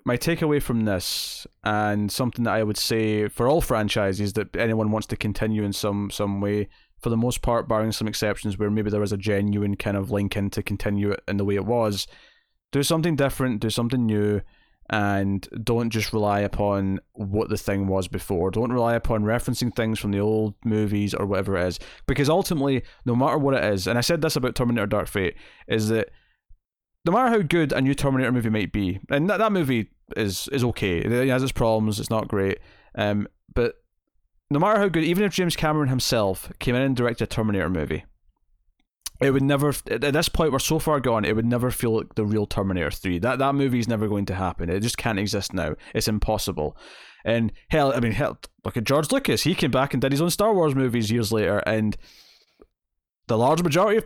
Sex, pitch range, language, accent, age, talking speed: male, 105-130 Hz, English, British, 20-39, 215 wpm